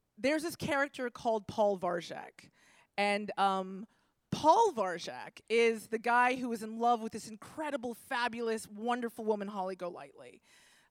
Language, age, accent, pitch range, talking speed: English, 20-39, American, 200-265 Hz, 145 wpm